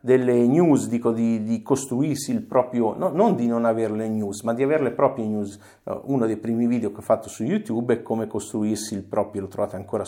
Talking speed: 225 wpm